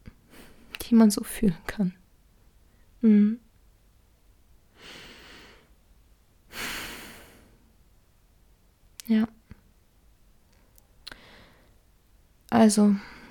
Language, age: German, 20-39